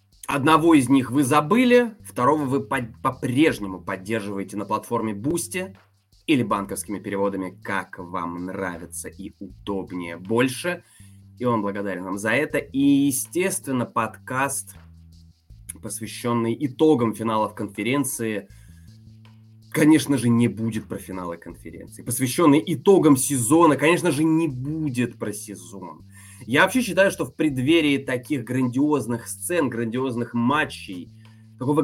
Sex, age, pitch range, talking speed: male, 20-39, 100-140 Hz, 115 wpm